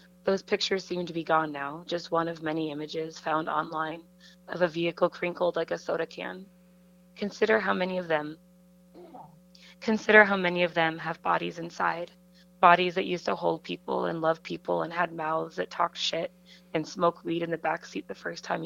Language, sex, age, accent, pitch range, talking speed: English, female, 20-39, American, 165-180 Hz, 190 wpm